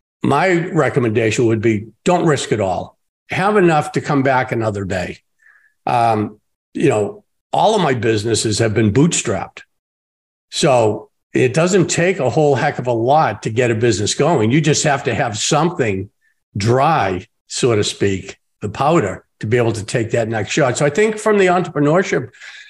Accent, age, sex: American, 50-69, male